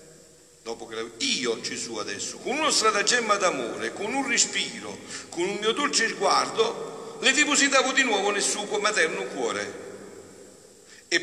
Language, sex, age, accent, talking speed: Italian, male, 60-79, native, 145 wpm